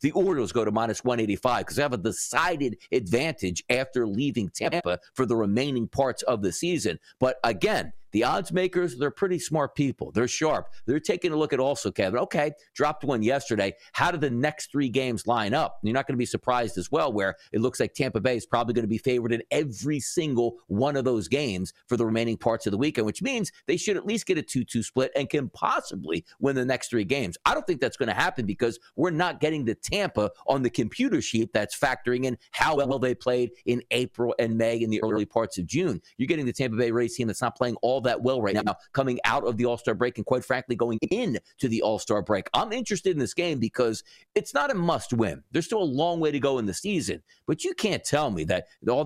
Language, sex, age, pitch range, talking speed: English, male, 50-69, 115-145 Hz, 240 wpm